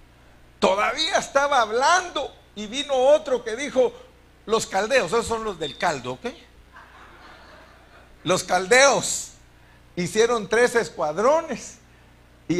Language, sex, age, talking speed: Spanish, male, 60-79, 105 wpm